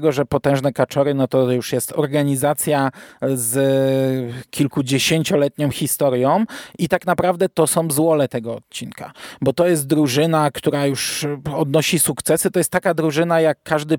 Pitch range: 135-165 Hz